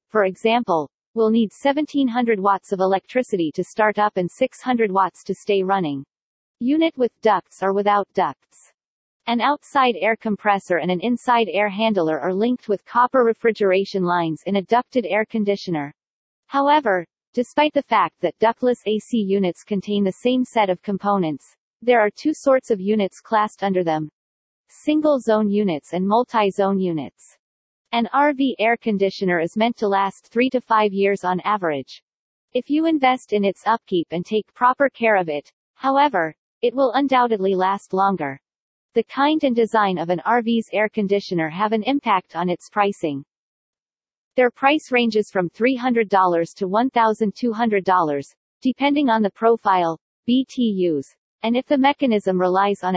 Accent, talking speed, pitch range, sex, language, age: American, 155 wpm, 185-245 Hz, female, English, 40-59